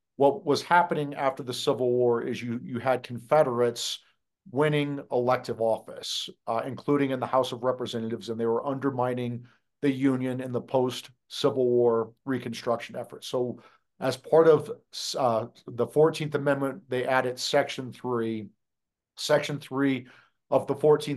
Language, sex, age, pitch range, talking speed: English, male, 50-69, 120-140 Hz, 140 wpm